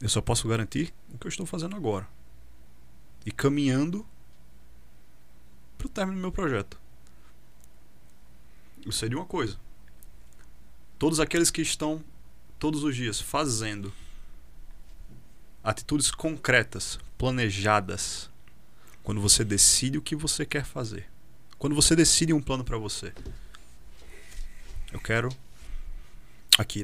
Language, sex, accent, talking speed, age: Portuguese, male, Brazilian, 115 wpm, 20-39